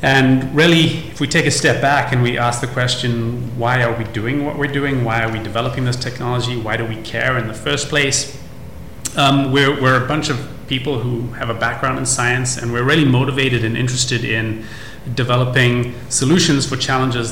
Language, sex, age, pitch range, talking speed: English, male, 30-49, 120-135 Hz, 200 wpm